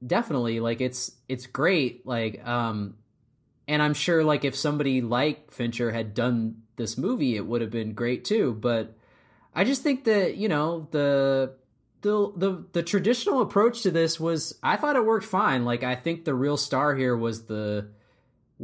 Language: English